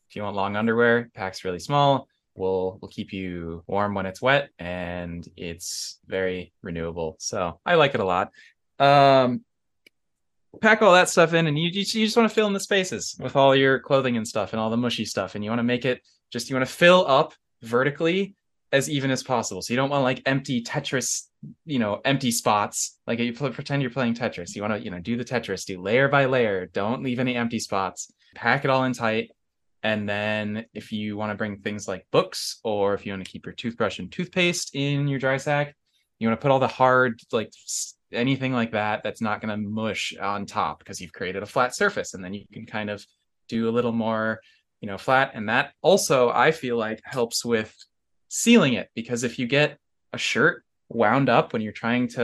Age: 20-39